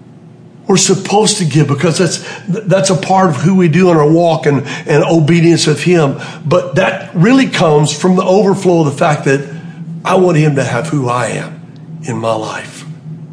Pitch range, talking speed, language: 150-190 Hz, 195 wpm, English